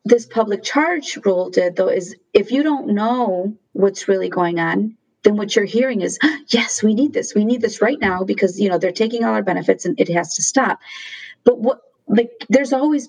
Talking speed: 215 wpm